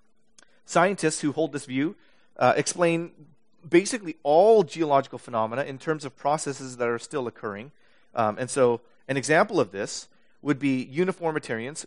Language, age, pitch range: English, 30-49, 115-155 Hz